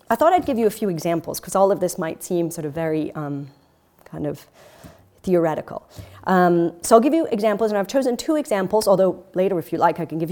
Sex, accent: female, American